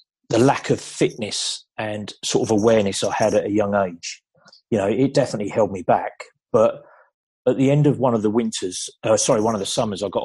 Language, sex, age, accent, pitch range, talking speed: English, male, 30-49, British, 100-120 Hz, 220 wpm